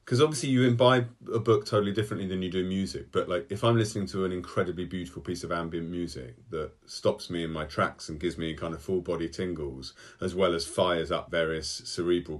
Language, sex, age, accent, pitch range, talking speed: English, male, 40-59, British, 85-110 Hz, 225 wpm